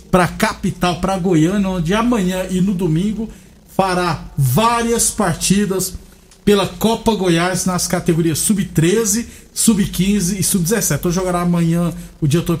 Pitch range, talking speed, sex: 170-205 Hz, 135 wpm, male